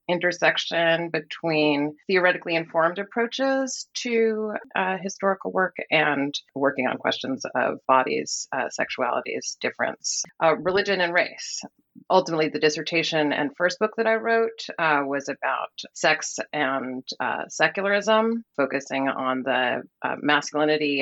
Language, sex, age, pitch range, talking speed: English, female, 30-49, 145-185 Hz, 125 wpm